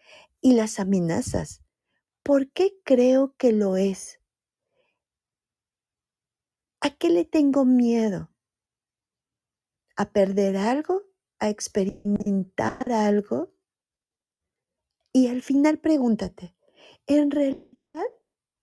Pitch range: 195-275 Hz